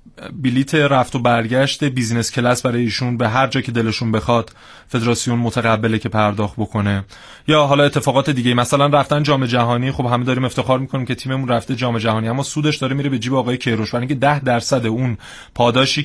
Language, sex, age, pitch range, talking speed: Persian, male, 30-49, 115-145 Hz, 190 wpm